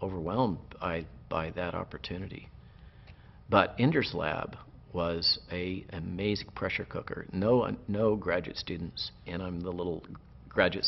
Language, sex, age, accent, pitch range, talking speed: English, male, 50-69, American, 90-115 Hz, 125 wpm